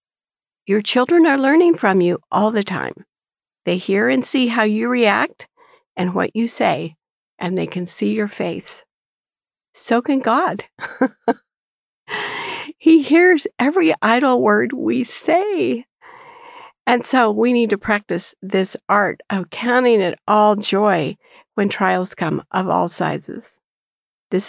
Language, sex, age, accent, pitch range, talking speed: English, female, 50-69, American, 200-305 Hz, 135 wpm